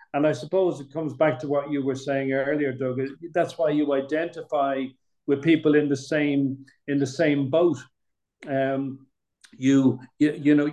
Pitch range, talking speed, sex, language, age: 135-150 Hz, 175 wpm, male, English, 50-69